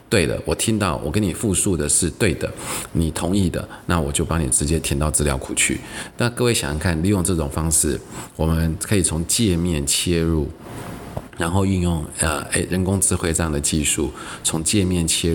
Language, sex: Chinese, male